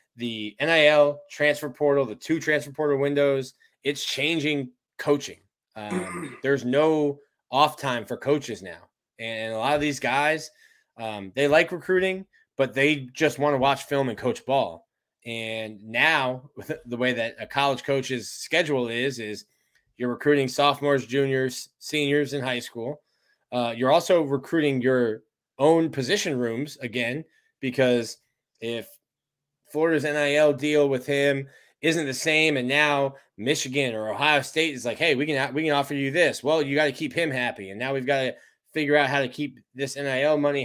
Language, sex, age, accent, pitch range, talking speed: English, male, 20-39, American, 125-150 Hz, 170 wpm